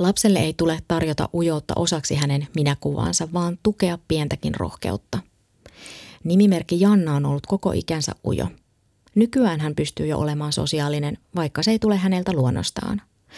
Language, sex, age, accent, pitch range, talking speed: Finnish, female, 30-49, native, 145-180 Hz, 140 wpm